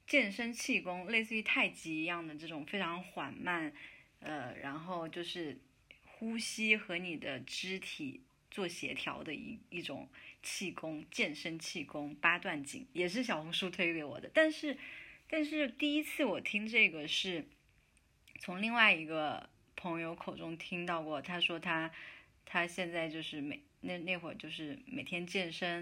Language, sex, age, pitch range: Chinese, female, 20-39, 160-225 Hz